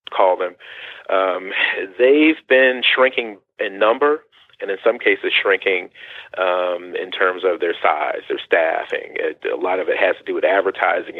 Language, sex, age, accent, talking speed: English, male, 40-59, American, 160 wpm